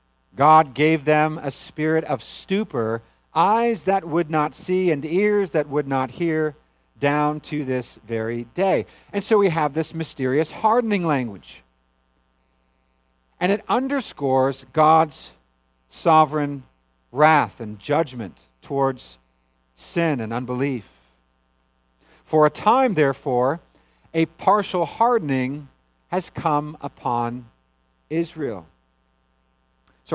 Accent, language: American, English